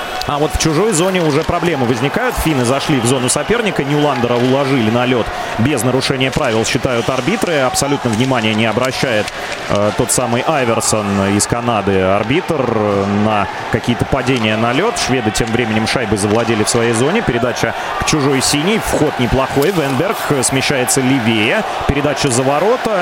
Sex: male